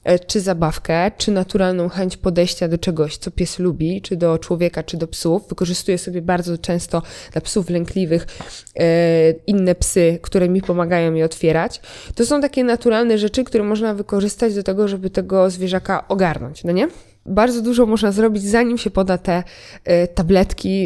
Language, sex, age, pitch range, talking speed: Polish, female, 20-39, 170-205 Hz, 160 wpm